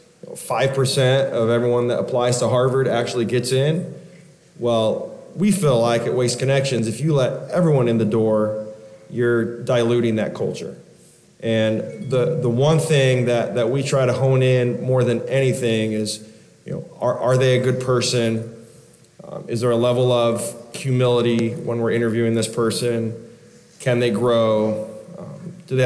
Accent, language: American, English